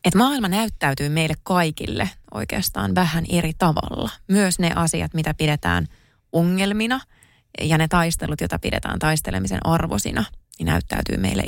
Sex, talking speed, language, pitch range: female, 130 wpm, Finnish, 135-185 Hz